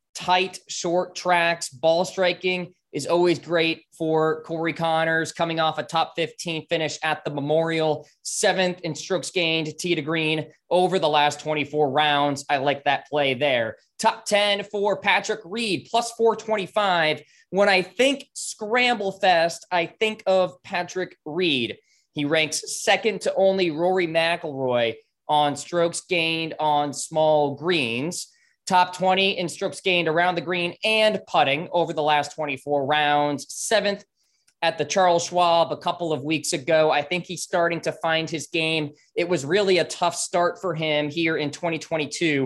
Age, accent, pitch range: 20-39, American, 155-190 Hz